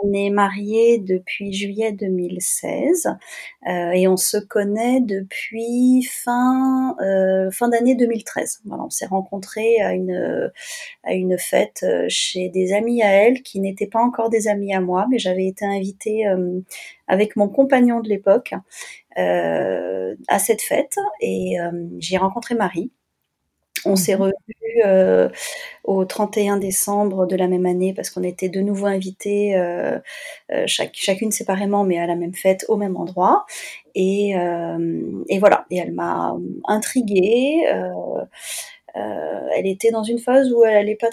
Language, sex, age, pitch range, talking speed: French, female, 30-49, 185-225 Hz, 155 wpm